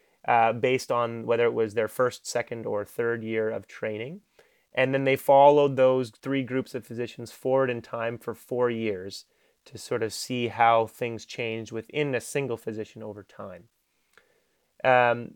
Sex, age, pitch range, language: male, 30-49, 115-130 Hz, English